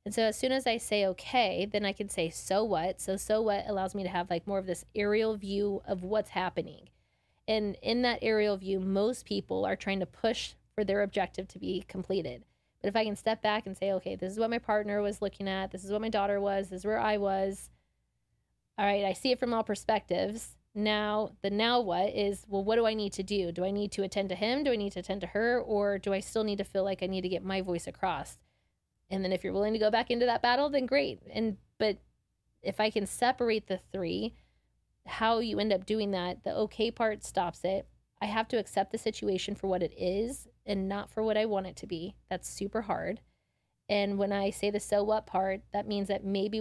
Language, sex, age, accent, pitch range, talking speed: English, female, 20-39, American, 190-215 Hz, 245 wpm